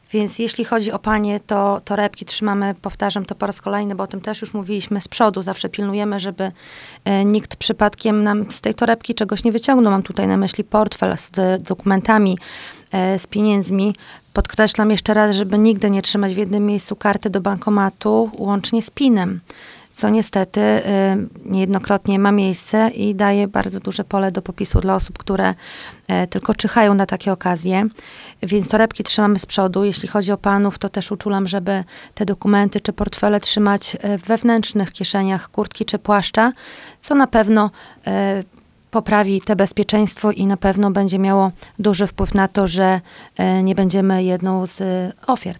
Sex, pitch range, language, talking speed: female, 195-210 Hz, Polish, 160 wpm